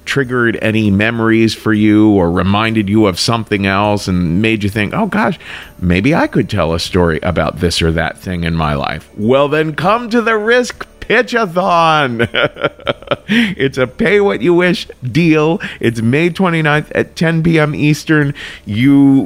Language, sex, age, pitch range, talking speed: English, male, 40-59, 95-130 Hz, 165 wpm